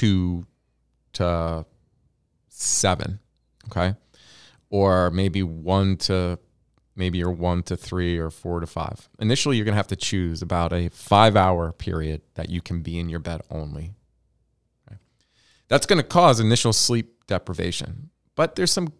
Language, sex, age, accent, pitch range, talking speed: English, male, 30-49, American, 90-115 Hz, 145 wpm